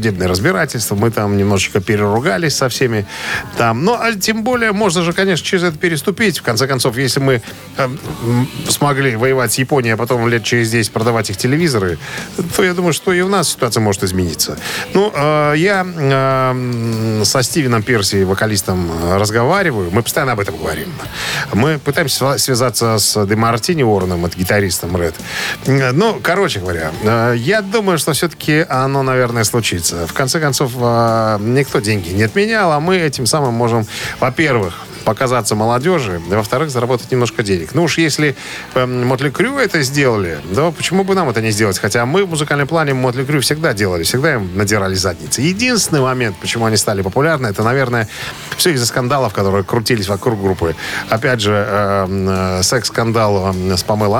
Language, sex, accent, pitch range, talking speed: Russian, male, native, 105-145 Hz, 165 wpm